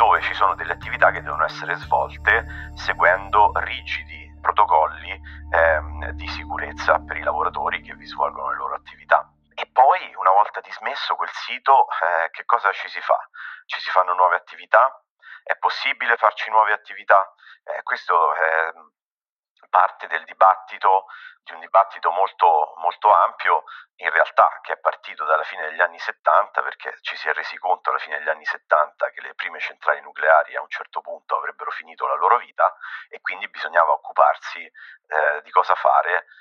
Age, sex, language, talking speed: 30-49, male, Italian, 170 wpm